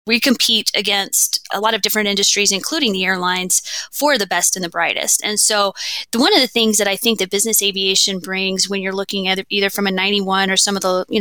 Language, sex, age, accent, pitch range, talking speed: English, female, 20-39, American, 190-225 Hz, 230 wpm